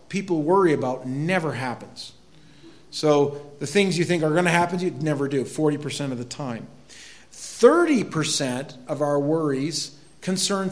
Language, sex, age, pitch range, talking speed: English, male, 50-69, 125-160 Hz, 150 wpm